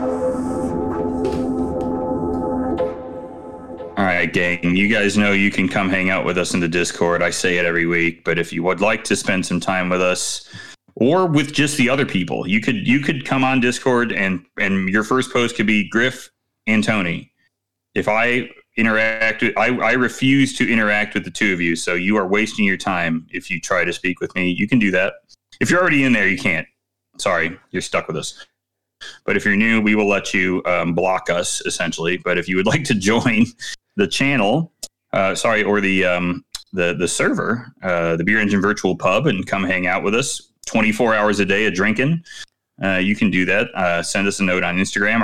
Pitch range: 85-110 Hz